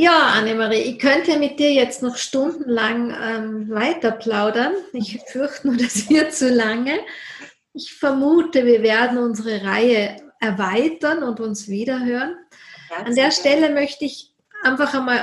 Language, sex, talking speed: German, female, 140 wpm